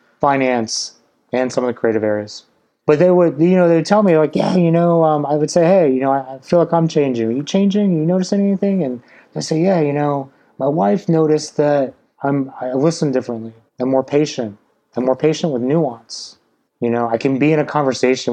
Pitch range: 115-155 Hz